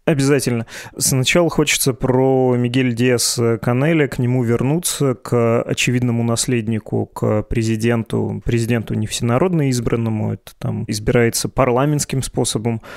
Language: Russian